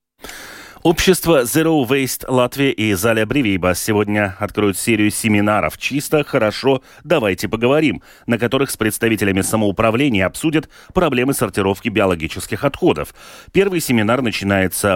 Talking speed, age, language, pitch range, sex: 110 wpm, 30-49, Russian, 100-140 Hz, male